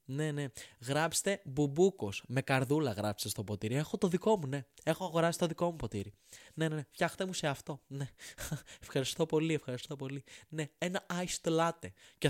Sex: male